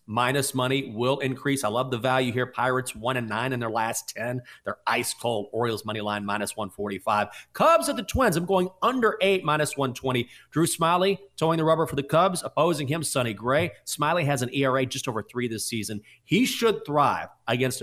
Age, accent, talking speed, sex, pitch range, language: 30-49, American, 200 wpm, male, 120-165 Hz, English